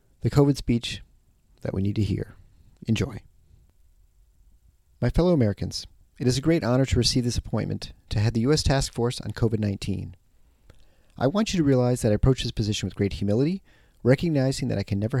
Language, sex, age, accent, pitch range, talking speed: English, male, 40-59, American, 95-130 Hz, 185 wpm